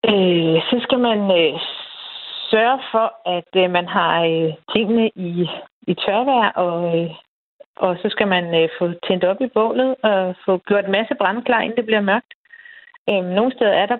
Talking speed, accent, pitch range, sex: 185 wpm, native, 185-225 Hz, female